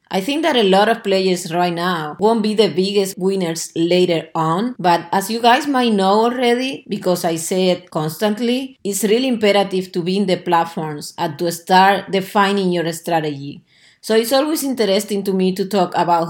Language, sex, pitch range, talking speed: English, female, 175-215 Hz, 190 wpm